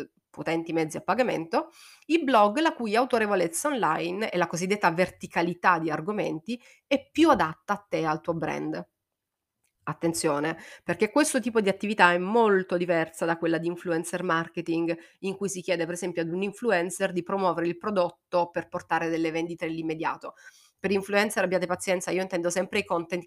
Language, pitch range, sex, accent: Italian, 170-205 Hz, female, native